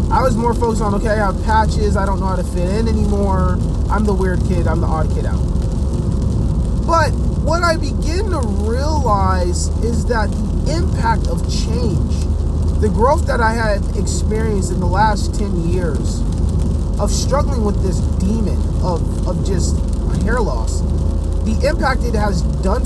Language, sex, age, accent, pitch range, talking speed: English, male, 30-49, American, 75-90 Hz, 170 wpm